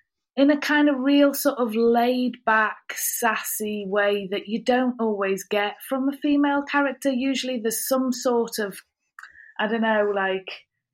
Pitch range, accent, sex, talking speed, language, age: 205-250 Hz, British, female, 155 wpm, English, 30-49